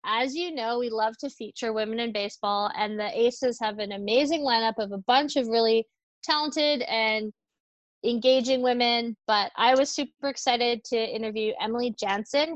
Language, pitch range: English, 220-265 Hz